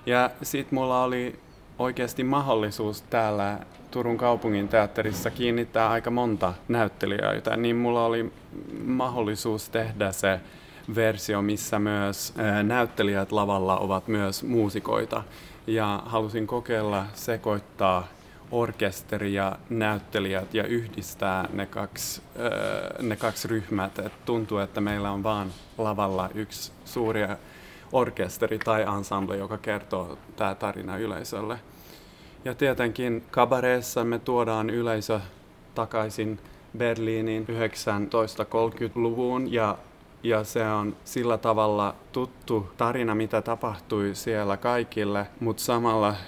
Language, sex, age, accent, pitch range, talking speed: Finnish, male, 30-49, native, 100-115 Hz, 105 wpm